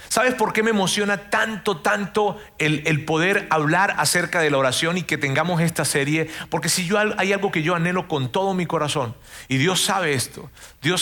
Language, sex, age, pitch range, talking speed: Spanish, male, 40-59, 140-205 Hz, 195 wpm